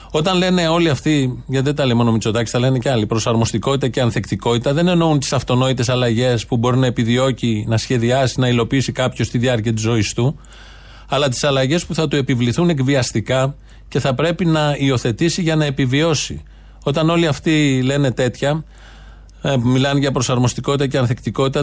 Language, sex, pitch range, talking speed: Greek, male, 115-150 Hz, 175 wpm